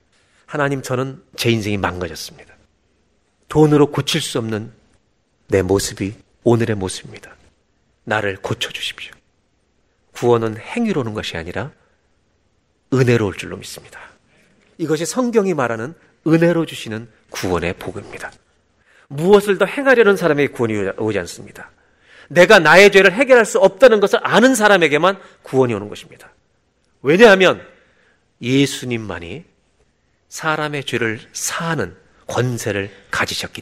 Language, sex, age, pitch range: Korean, male, 40-59, 105-165 Hz